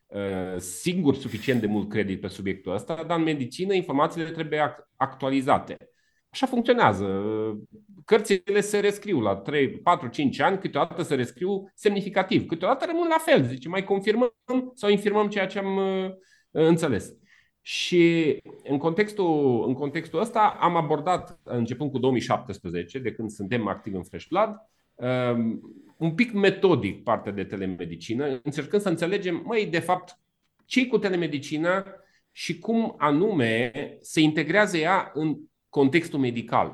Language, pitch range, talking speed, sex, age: Romanian, 115-190 Hz, 135 wpm, male, 30-49